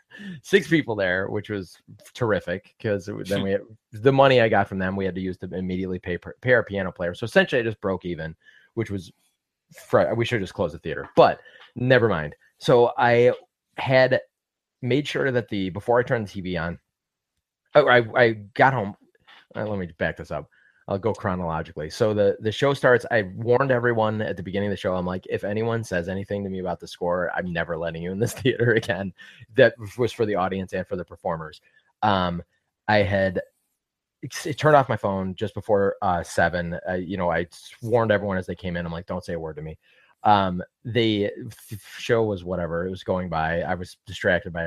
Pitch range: 90-115 Hz